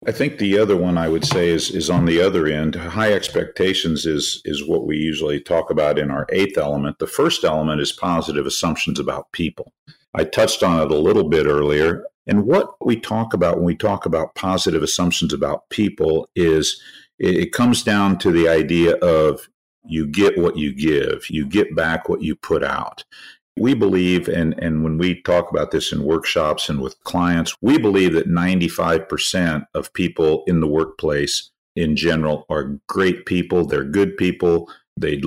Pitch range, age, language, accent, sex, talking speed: 80-90 Hz, 50-69, English, American, male, 185 wpm